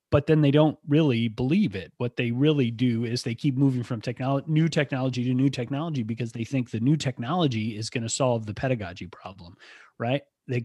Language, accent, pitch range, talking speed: English, American, 110-140 Hz, 210 wpm